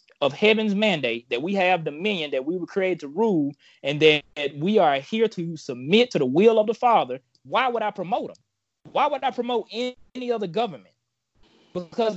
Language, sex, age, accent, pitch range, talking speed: English, male, 20-39, American, 160-220 Hz, 190 wpm